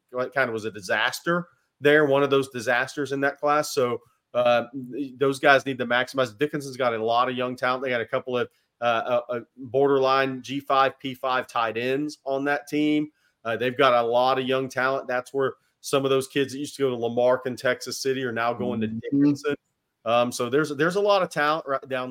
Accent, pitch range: American, 120-140 Hz